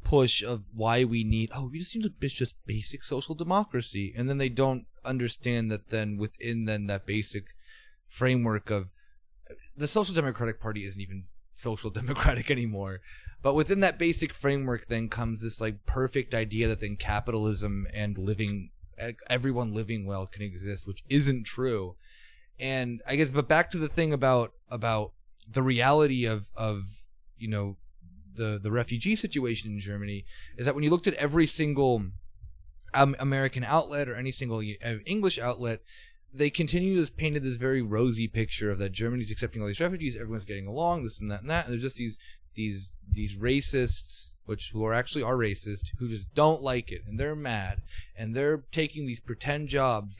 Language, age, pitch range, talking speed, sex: English, 20-39, 105-140 Hz, 180 wpm, male